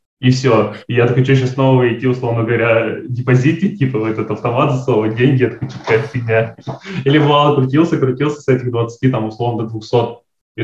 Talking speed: 190 wpm